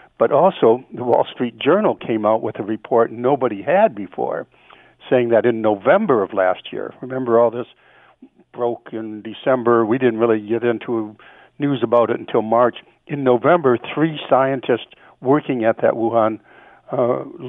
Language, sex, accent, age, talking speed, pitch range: English, male, American, 60-79, 160 wpm, 115-150 Hz